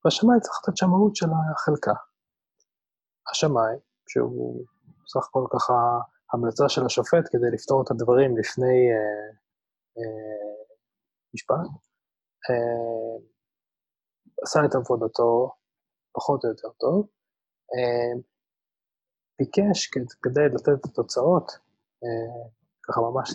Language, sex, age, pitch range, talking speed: Hebrew, male, 20-39, 120-160 Hz, 105 wpm